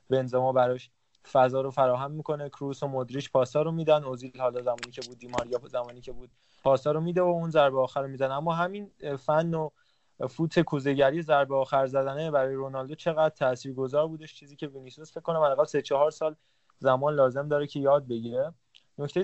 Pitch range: 130-155 Hz